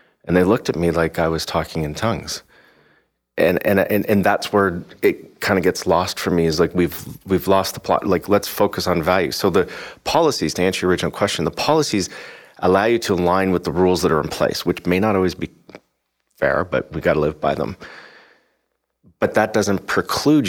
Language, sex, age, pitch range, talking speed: English, male, 40-59, 85-95 Hz, 215 wpm